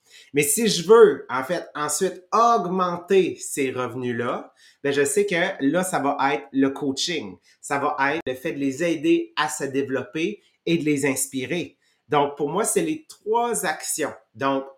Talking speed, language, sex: 175 wpm, English, male